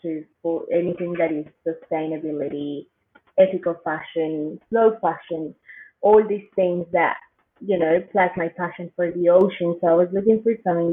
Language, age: English, 20-39